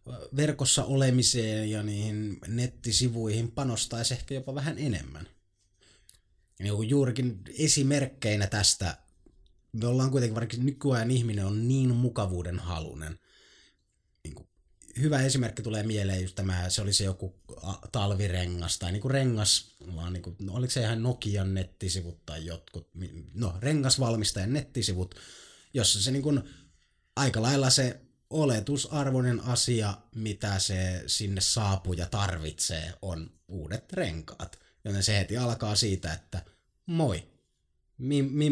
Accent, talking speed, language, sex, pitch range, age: native, 110 wpm, Finnish, male, 90-125 Hz, 30-49